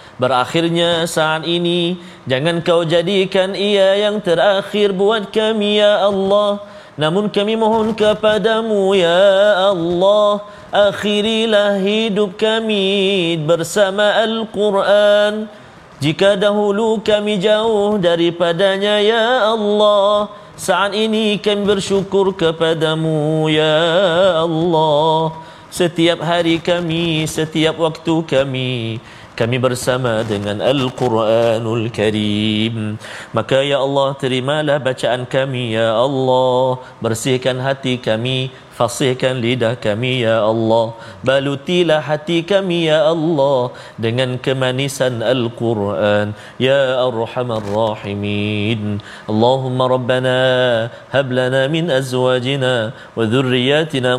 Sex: male